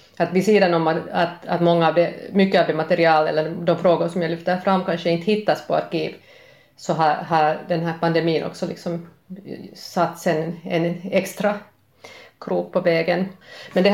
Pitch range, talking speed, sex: 165-190 Hz, 180 wpm, female